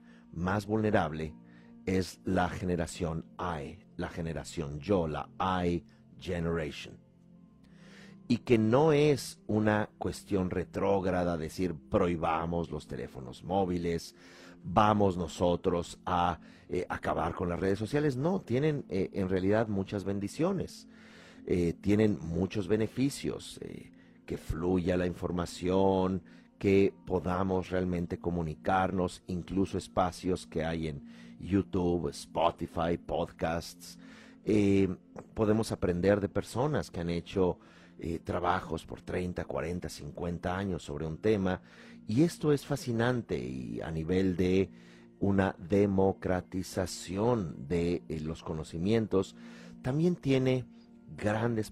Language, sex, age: Spanish, male, 40-59